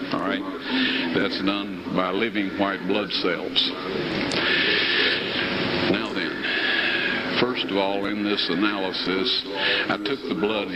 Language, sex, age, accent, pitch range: Chinese, male, 60-79, American, 95-110 Hz